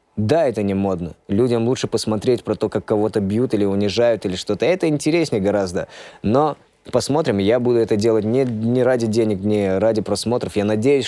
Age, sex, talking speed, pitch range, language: 20-39, male, 185 wpm, 100-115 Hz, Russian